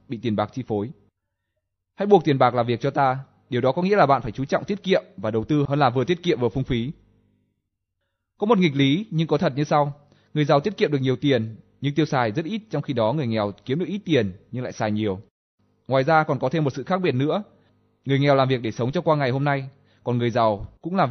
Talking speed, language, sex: 270 wpm, Vietnamese, male